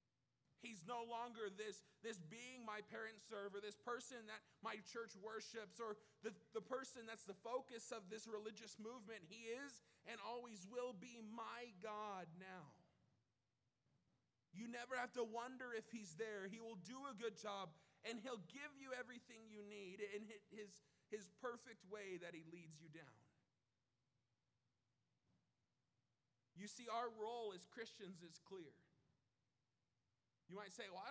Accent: American